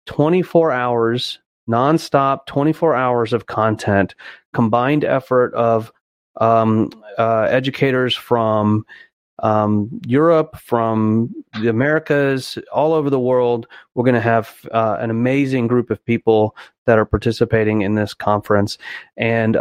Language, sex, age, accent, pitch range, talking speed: English, male, 30-49, American, 110-130 Hz, 120 wpm